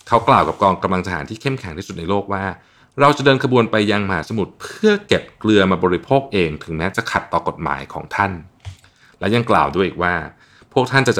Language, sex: Thai, male